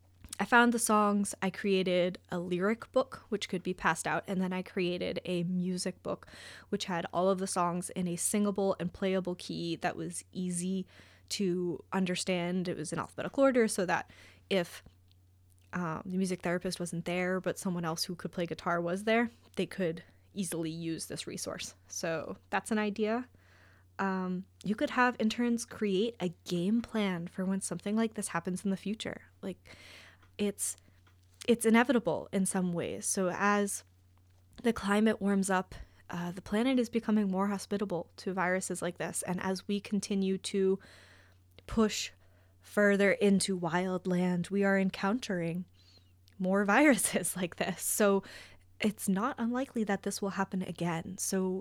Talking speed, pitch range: 165 wpm, 170-205 Hz